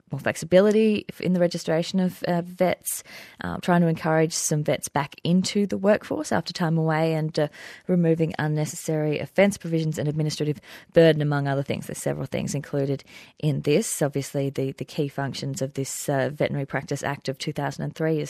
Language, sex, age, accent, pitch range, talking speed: English, female, 20-39, Australian, 145-165 Hz, 170 wpm